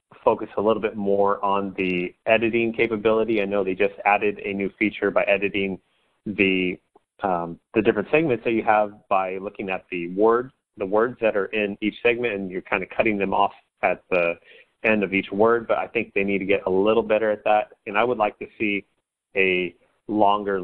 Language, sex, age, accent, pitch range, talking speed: English, male, 30-49, American, 95-110 Hz, 210 wpm